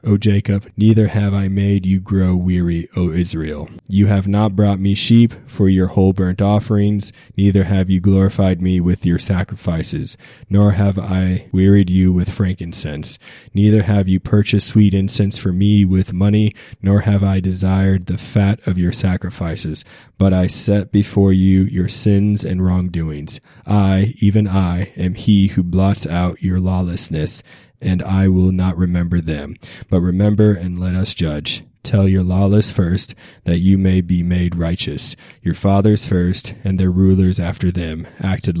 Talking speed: 165 wpm